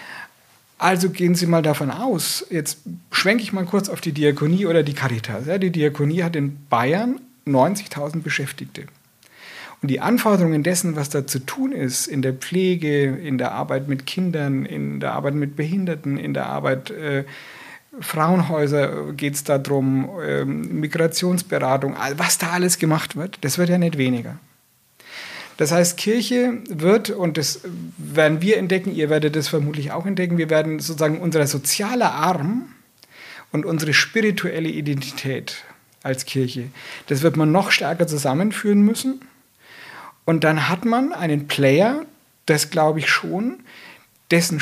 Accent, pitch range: German, 140-180 Hz